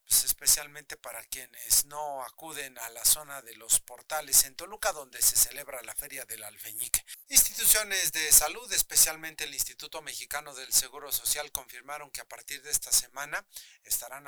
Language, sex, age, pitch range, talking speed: Spanish, male, 40-59, 130-165 Hz, 160 wpm